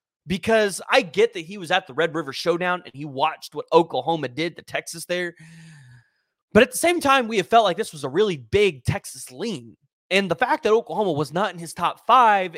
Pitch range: 155-195 Hz